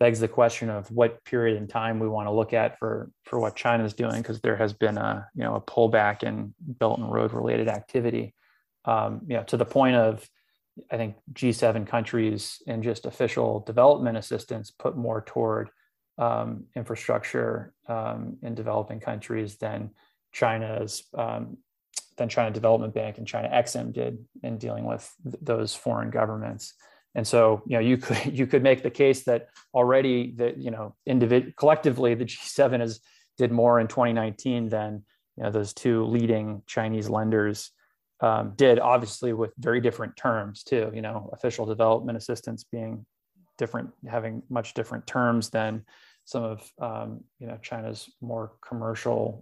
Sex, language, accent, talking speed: male, English, American, 165 wpm